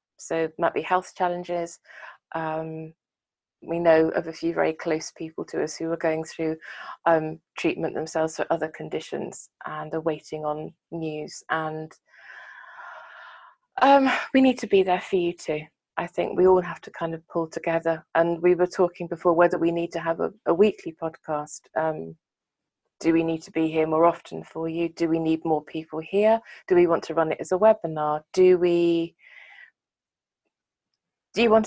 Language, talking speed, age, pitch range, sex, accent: English, 185 wpm, 20-39, 160-185 Hz, female, British